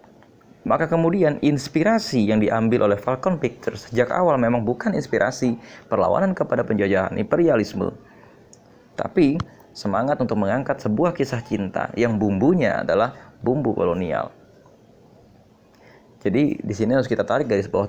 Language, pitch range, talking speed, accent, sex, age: Indonesian, 105-145 Hz, 125 wpm, native, male, 20-39